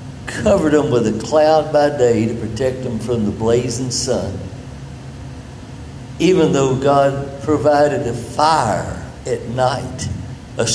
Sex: male